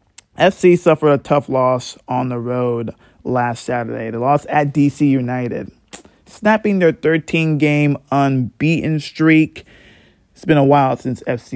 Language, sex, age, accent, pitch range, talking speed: English, male, 20-39, American, 125-155 Hz, 135 wpm